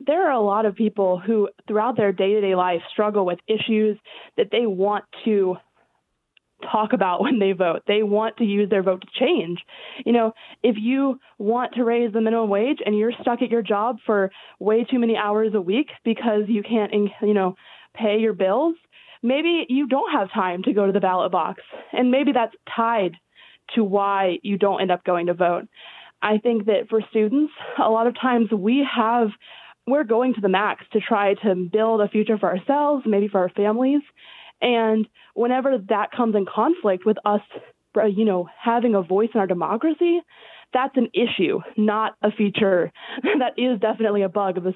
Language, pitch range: English, 200-240 Hz